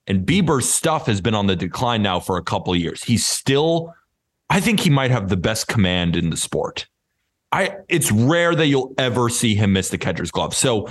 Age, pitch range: 30-49, 95-130 Hz